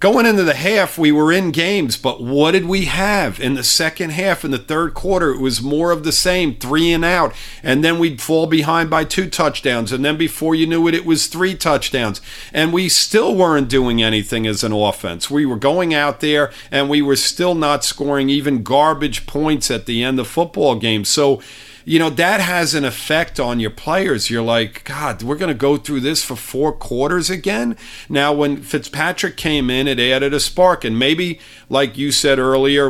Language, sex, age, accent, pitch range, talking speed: English, male, 50-69, American, 125-160 Hz, 210 wpm